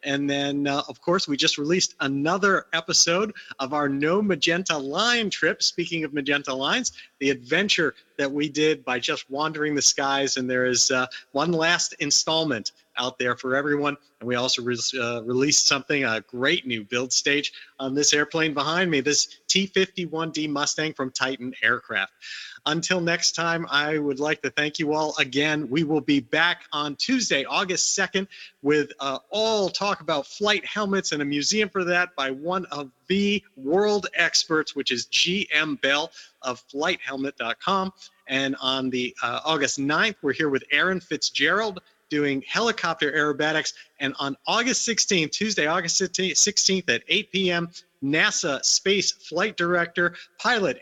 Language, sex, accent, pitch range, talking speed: English, male, American, 140-180 Hz, 160 wpm